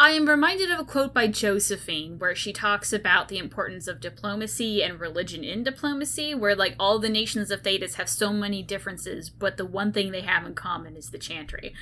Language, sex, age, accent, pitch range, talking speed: English, female, 10-29, American, 185-230 Hz, 215 wpm